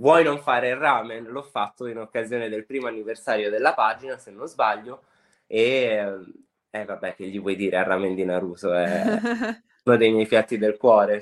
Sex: male